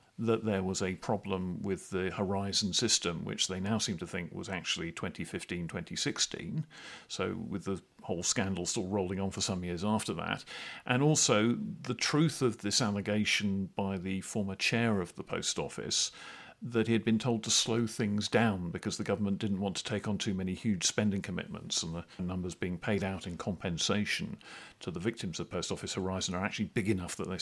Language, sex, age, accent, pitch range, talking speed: English, male, 50-69, British, 100-120 Hz, 195 wpm